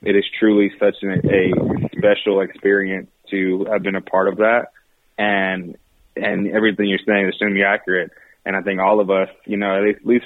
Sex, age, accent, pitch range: male, 20-39, American, 100-115 Hz